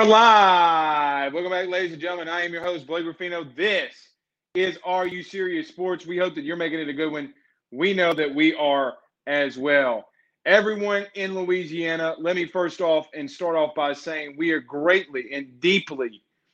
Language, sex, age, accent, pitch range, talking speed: English, male, 30-49, American, 140-175 Hz, 185 wpm